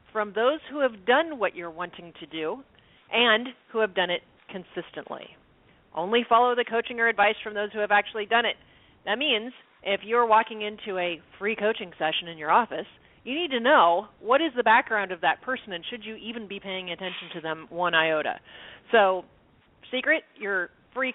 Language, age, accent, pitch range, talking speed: English, 40-59, American, 175-235 Hz, 195 wpm